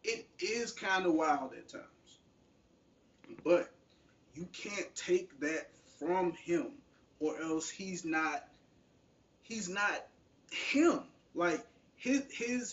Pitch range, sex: 160-260 Hz, male